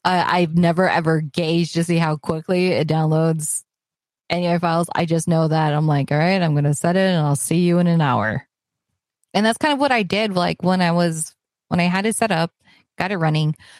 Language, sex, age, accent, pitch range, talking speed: English, female, 20-39, American, 155-185 Hz, 230 wpm